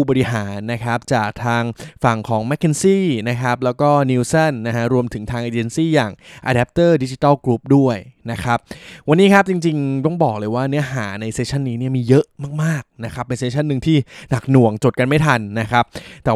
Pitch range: 115-150 Hz